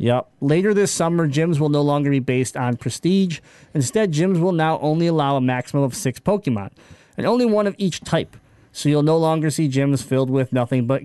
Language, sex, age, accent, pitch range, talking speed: English, male, 30-49, American, 130-160 Hz, 210 wpm